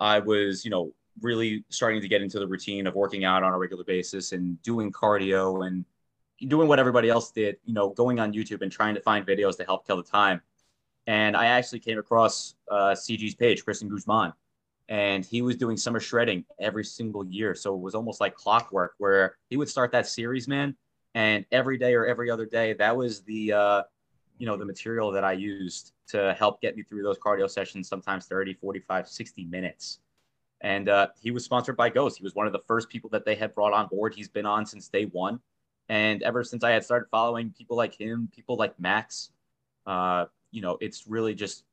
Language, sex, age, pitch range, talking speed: English, male, 20-39, 95-115 Hz, 215 wpm